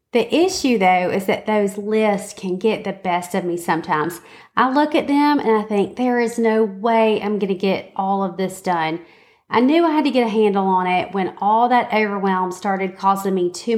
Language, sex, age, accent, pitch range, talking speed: English, female, 30-49, American, 185-225 Hz, 220 wpm